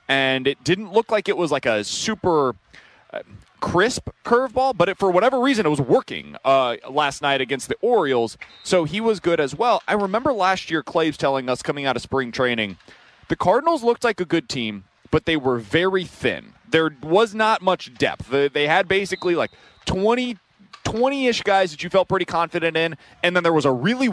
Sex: male